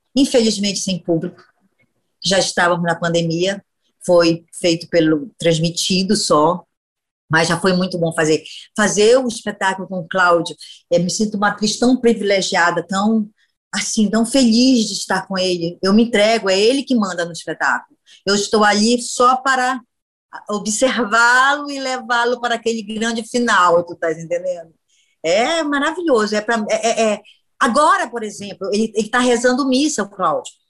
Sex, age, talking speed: female, 20-39, 150 wpm